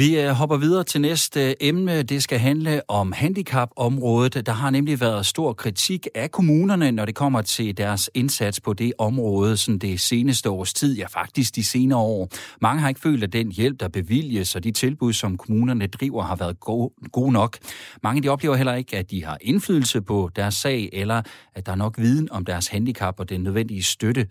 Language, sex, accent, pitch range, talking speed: Danish, male, native, 100-135 Hz, 200 wpm